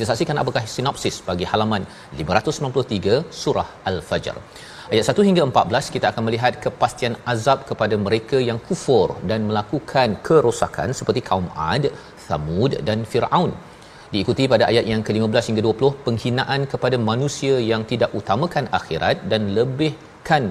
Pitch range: 95-125 Hz